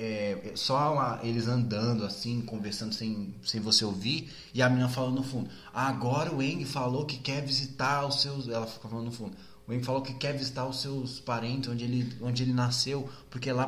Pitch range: 125-160 Hz